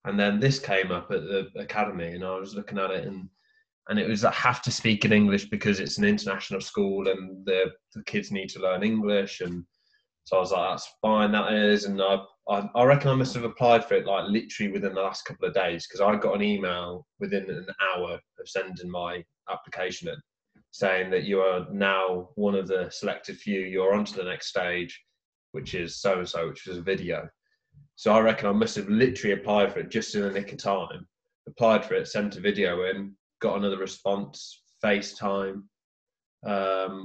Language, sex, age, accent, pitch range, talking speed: English, male, 20-39, British, 95-110 Hz, 205 wpm